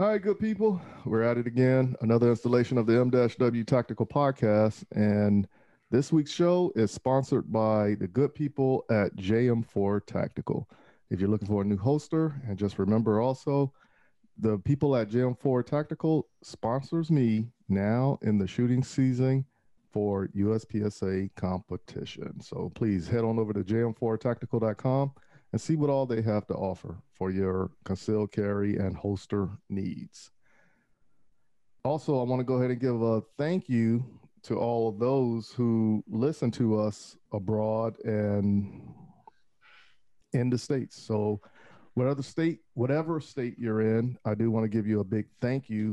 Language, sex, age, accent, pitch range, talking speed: English, male, 40-59, American, 105-130 Hz, 150 wpm